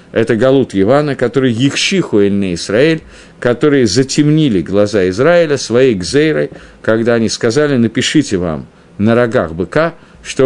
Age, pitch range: 50-69, 105-145 Hz